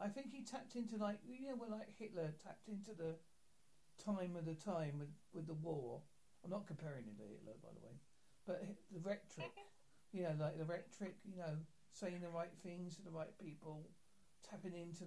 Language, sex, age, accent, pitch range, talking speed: English, male, 50-69, British, 165-245 Hz, 205 wpm